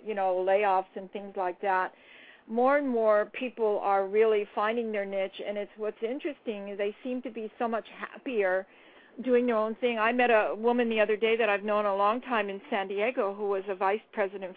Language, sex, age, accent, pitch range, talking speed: English, female, 50-69, American, 200-240 Hz, 220 wpm